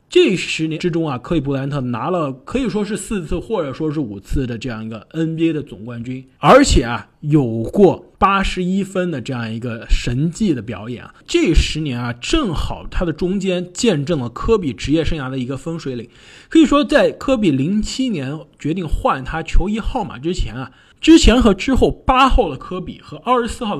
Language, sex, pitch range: Chinese, male, 125-195 Hz